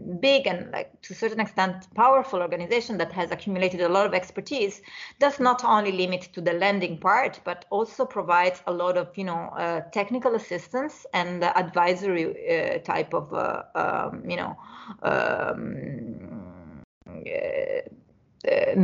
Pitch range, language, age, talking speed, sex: 180-220 Hz, English, 30-49, 155 wpm, female